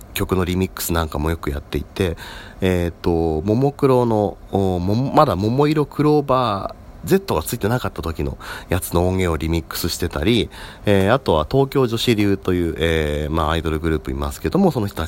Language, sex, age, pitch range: Japanese, male, 40-59, 85-120 Hz